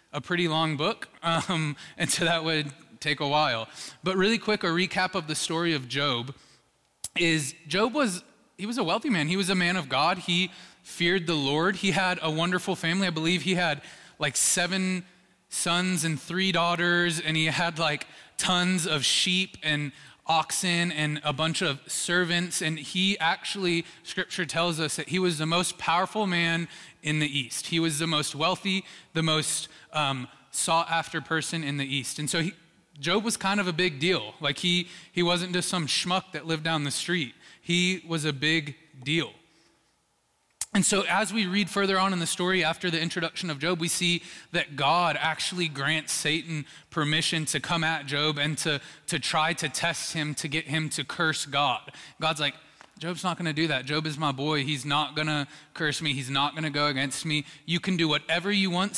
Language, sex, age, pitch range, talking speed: English, male, 20-39, 150-180 Hz, 200 wpm